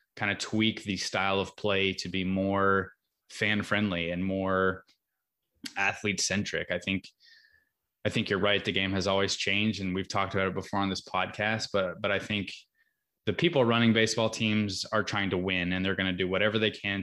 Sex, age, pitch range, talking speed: male, 20-39, 95-110 Hz, 200 wpm